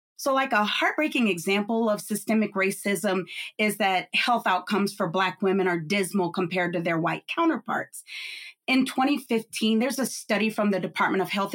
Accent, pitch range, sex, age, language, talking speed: American, 190-240 Hz, female, 30-49, English, 165 wpm